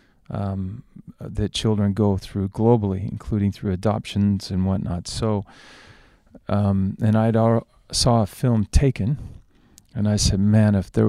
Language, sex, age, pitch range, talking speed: English, male, 40-59, 100-115 Hz, 135 wpm